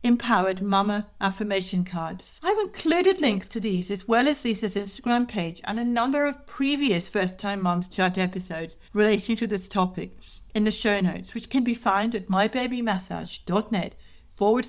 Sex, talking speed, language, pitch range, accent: female, 160 wpm, English, 185-255 Hz, British